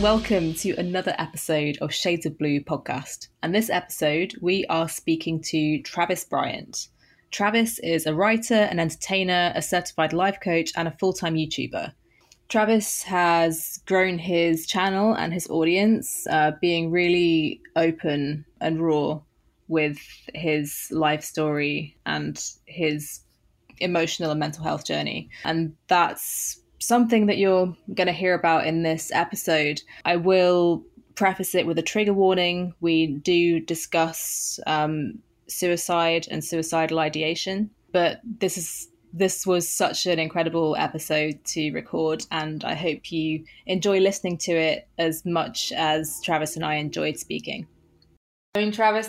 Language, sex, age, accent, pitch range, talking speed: English, female, 20-39, British, 155-185 Hz, 140 wpm